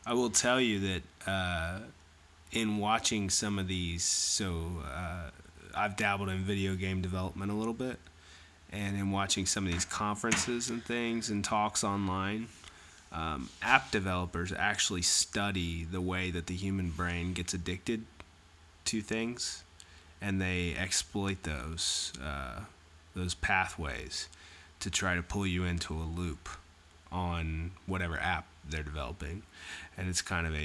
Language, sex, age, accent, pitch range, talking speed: English, male, 20-39, American, 80-95 Hz, 145 wpm